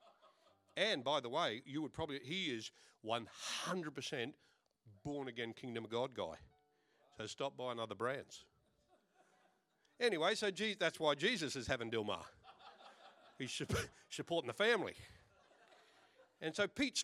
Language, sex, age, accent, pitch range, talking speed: English, male, 50-69, Australian, 135-220 Hz, 130 wpm